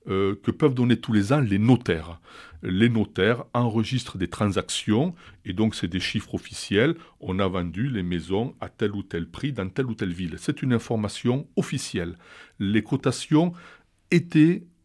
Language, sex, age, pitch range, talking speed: French, male, 60-79, 105-140 Hz, 165 wpm